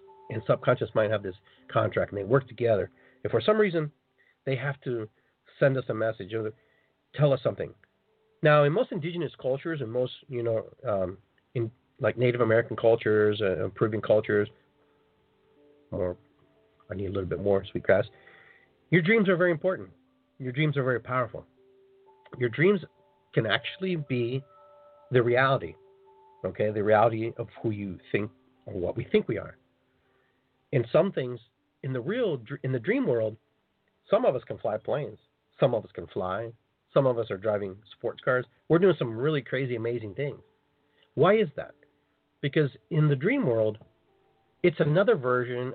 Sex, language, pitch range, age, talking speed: male, English, 110-145 Hz, 40-59, 165 wpm